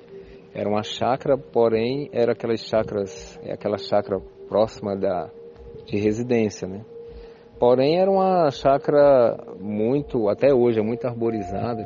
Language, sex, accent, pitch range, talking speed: Portuguese, male, Brazilian, 105-165 Hz, 125 wpm